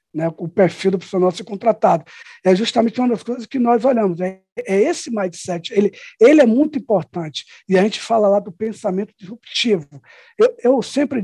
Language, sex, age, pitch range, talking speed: Portuguese, male, 50-69, 185-245 Hz, 185 wpm